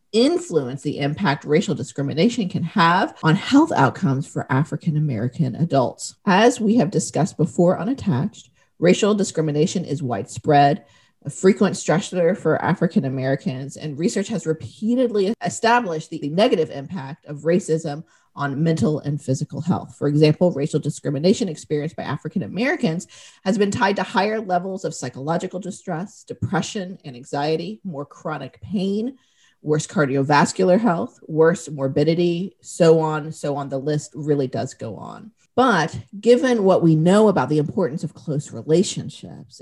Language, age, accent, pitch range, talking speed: English, 40-59, American, 145-195 Hz, 140 wpm